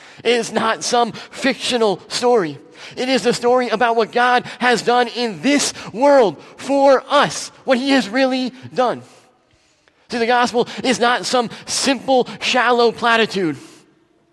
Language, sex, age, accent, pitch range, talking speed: English, male, 30-49, American, 225-255 Hz, 140 wpm